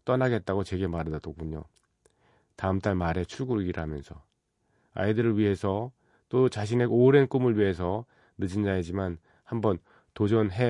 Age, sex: 40-59, male